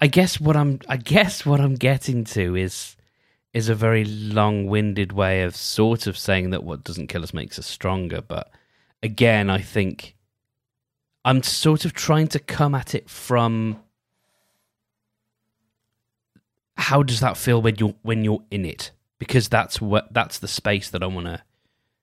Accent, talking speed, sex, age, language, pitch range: British, 165 wpm, male, 20-39, English, 95-125 Hz